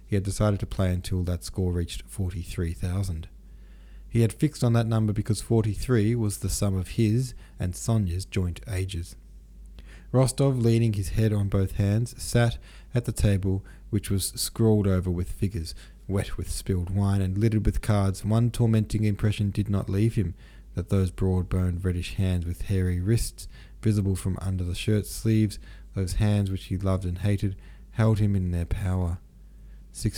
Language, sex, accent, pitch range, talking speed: English, male, Australian, 90-110 Hz, 170 wpm